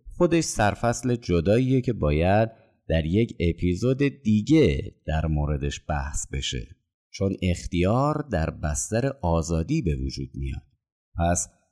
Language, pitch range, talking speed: Persian, 85-120 Hz, 115 wpm